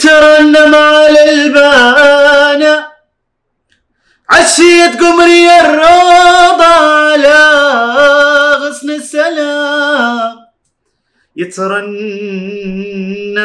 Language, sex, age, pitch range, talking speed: Urdu, male, 30-49, 240-305 Hz, 50 wpm